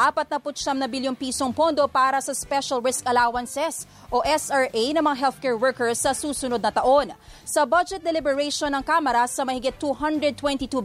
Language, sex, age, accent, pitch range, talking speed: English, female, 30-49, Filipino, 245-285 Hz, 150 wpm